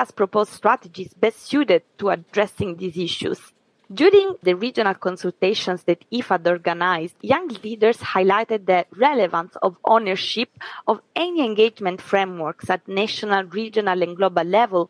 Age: 20-39